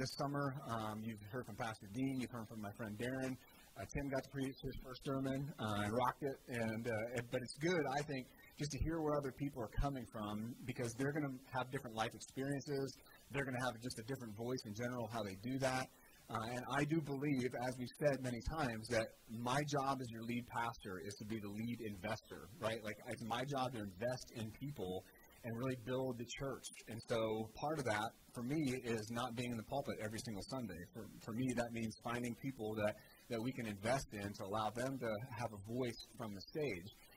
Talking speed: 230 wpm